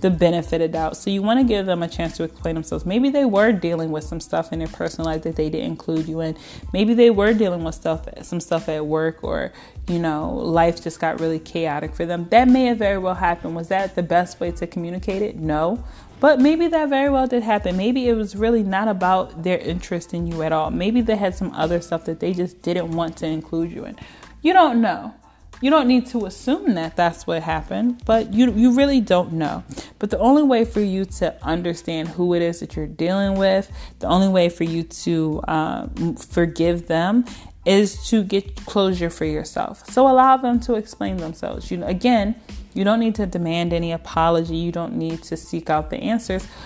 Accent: American